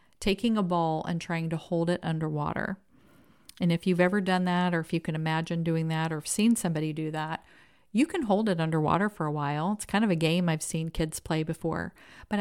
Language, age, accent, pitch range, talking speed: English, 40-59, American, 165-195 Hz, 220 wpm